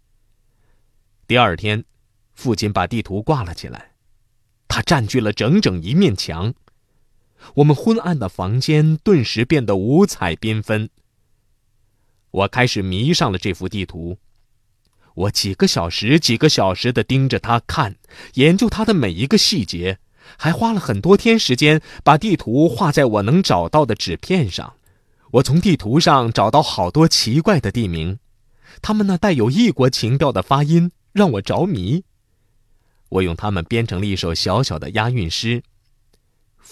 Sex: male